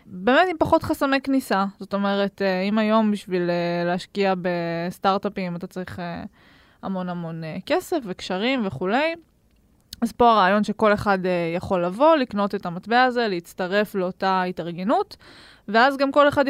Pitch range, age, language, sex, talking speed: 180-230 Hz, 20-39, Hebrew, female, 135 wpm